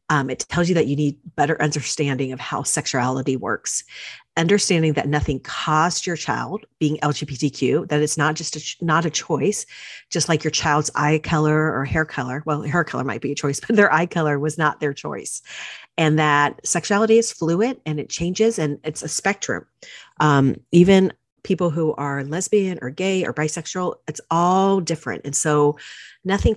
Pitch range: 145-175 Hz